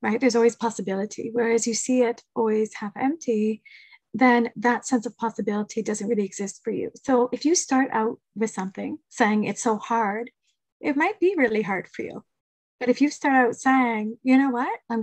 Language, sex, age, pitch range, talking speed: English, female, 30-49, 225-270 Hz, 195 wpm